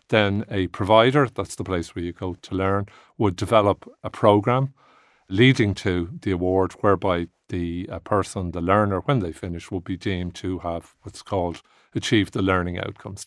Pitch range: 90-105 Hz